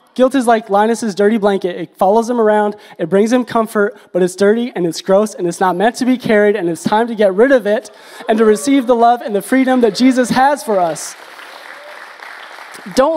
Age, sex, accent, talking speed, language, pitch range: 20-39, male, American, 225 wpm, English, 180-230 Hz